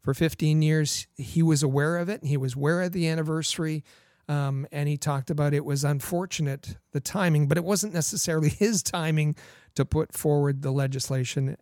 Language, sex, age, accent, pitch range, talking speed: English, male, 40-59, American, 130-155 Hz, 185 wpm